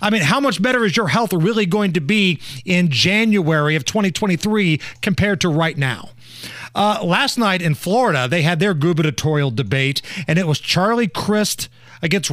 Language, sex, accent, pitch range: English, male, American, 145-210 Hz